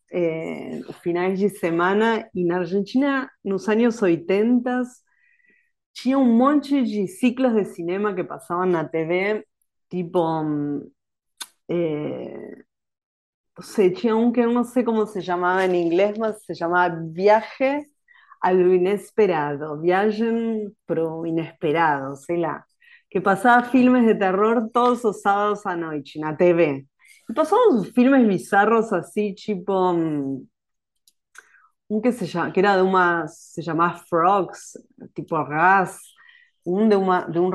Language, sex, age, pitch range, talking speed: Portuguese, female, 30-49, 175-225 Hz, 130 wpm